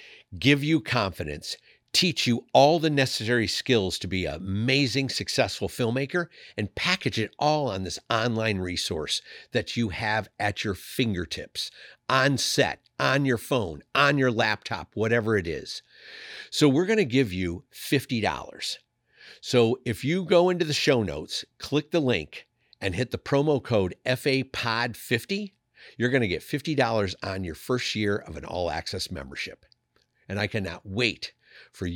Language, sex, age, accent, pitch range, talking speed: English, male, 50-69, American, 95-135 Hz, 155 wpm